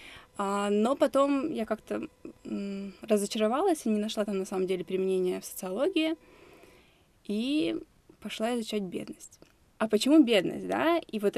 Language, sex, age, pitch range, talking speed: Russian, female, 20-39, 190-260 Hz, 130 wpm